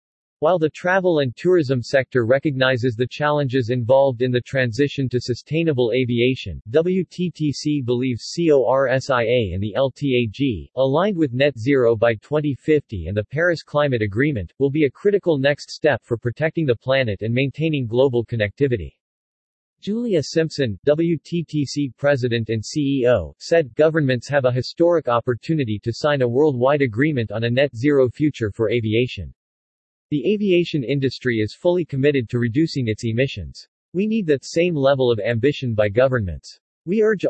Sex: male